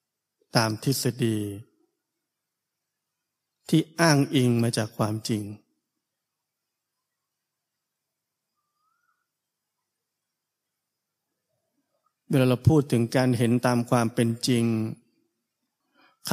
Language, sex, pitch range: Thai, male, 115-145 Hz